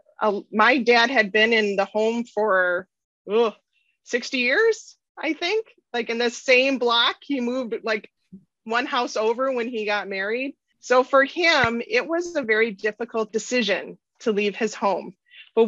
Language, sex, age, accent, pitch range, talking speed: English, female, 30-49, American, 200-245 Hz, 165 wpm